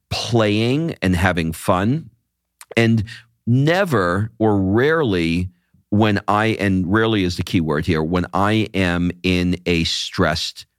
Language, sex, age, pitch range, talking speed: English, male, 50-69, 85-115 Hz, 130 wpm